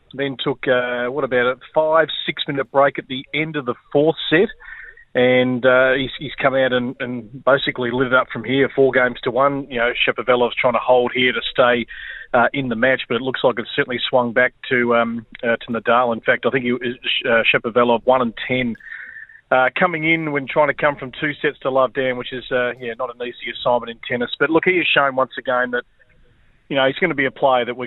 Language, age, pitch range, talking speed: English, 40-59, 120-140 Hz, 235 wpm